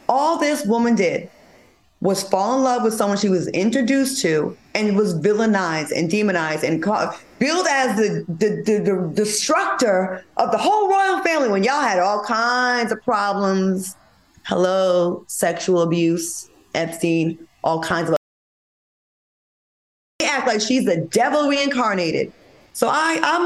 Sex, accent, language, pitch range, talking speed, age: female, American, English, 185-250 Hz, 150 wpm, 20-39